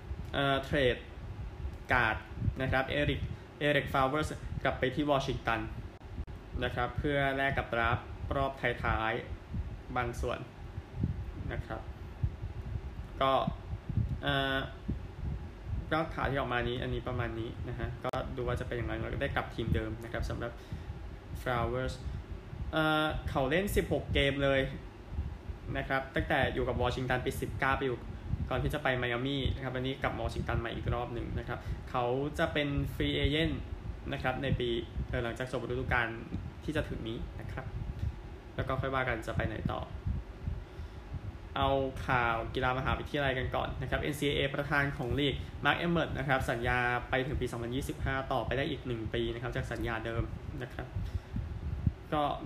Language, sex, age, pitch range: Thai, male, 20-39, 105-135 Hz